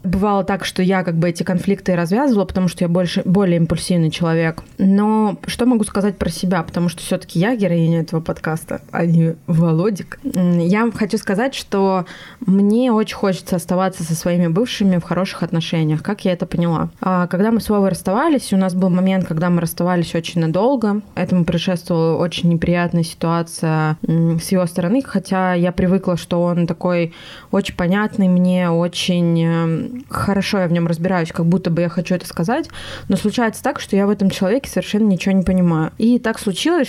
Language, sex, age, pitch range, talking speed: Russian, female, 20-39, 175-205 Hz, 180 wpm